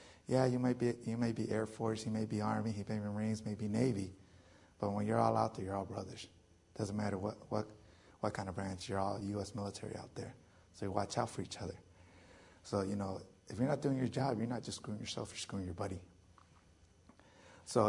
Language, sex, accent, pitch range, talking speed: English, male, American, 95-110 Hz, 235 wpm